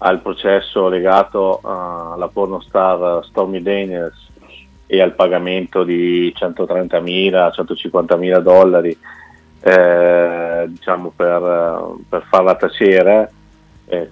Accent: native